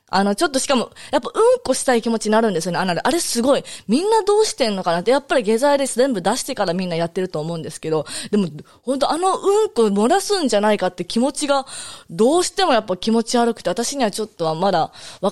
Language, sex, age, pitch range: Japanese, female, 20-39, 185-275 Hz